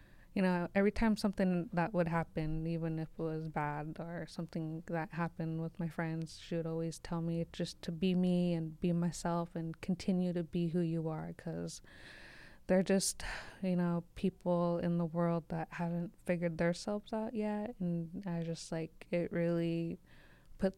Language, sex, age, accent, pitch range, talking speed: English, female, 20-39, American, 165-180 Hz, 175 wpm